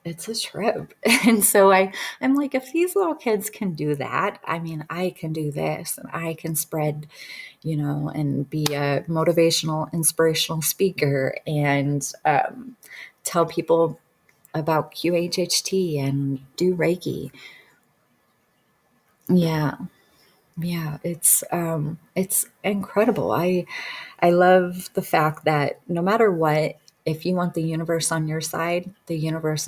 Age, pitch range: 30-49, 150-185 Hz